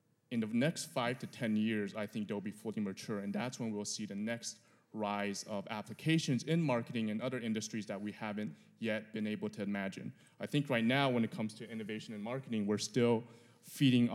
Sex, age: male, 20-39